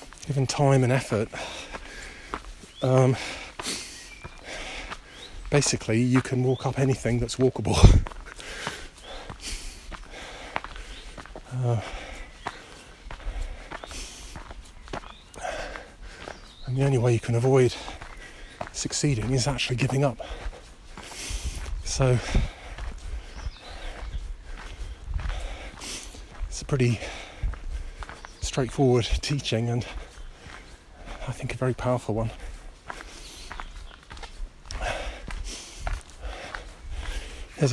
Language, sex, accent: English, male, British